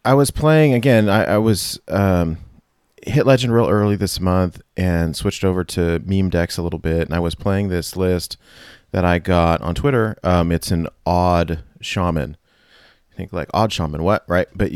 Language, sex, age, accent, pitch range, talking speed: English, male, 30-49, American, 85-100 Hz, 190 wpm